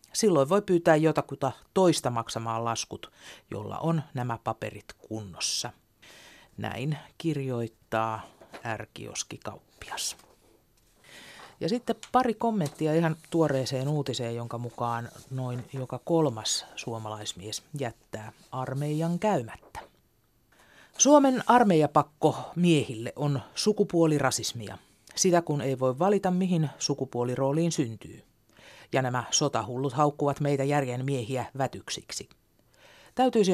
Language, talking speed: Finnish, 95 wpm